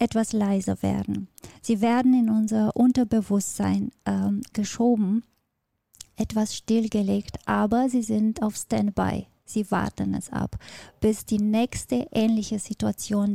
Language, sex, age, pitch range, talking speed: German, female, 20-39, 195-230 Hz, 115 wpm